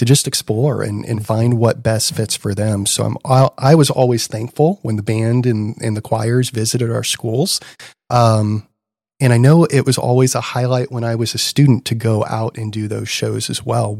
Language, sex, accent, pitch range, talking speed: English, male, American, 110-130 Hz, 215 wpm